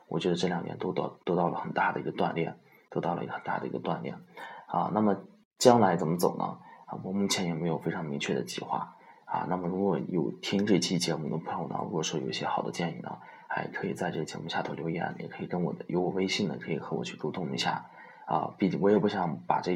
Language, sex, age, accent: Chinese, male, 20-39, native